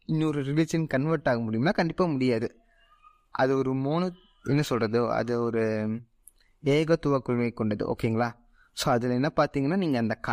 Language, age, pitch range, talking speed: Tamil, 20-39, 125-160 Hz, 135 wpm